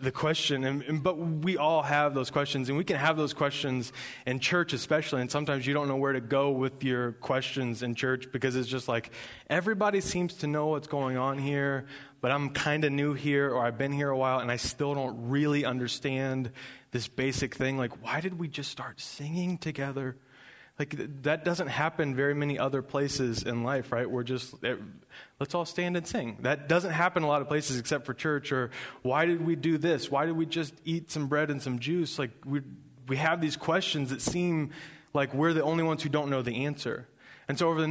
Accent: American